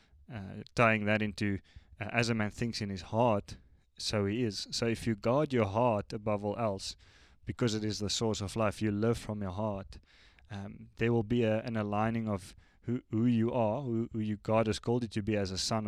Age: 20-39